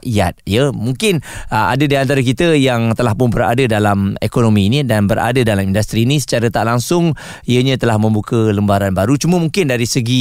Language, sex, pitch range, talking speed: Malay, male, 110-140 Hz, 190 wpm